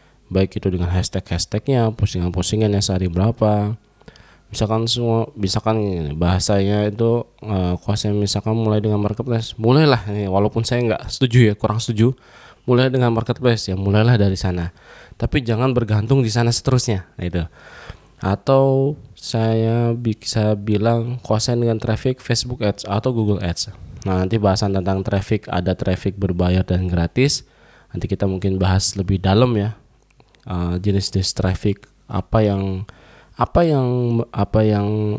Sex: male